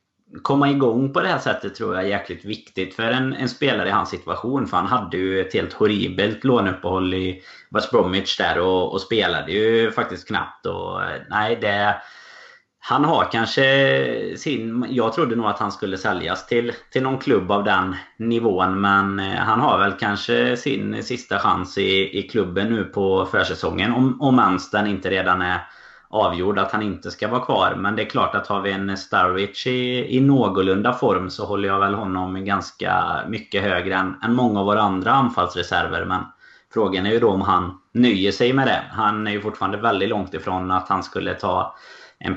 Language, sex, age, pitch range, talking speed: Swedish, male, 30-49, 95-120 Hz, 190 wpm